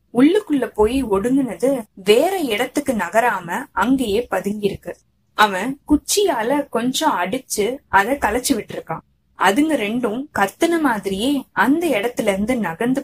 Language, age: Tamil, 20-39